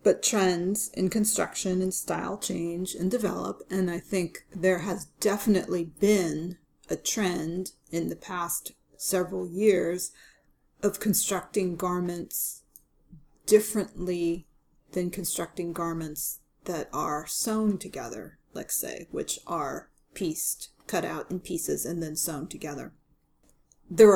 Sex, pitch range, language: female, 170-195 Hz, English